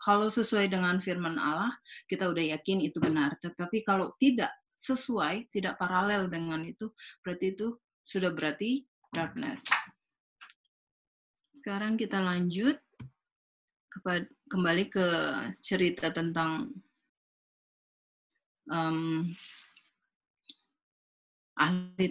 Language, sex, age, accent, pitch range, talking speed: Indonesian, female, 30-49, native, 175-220 Hz, 85 wpm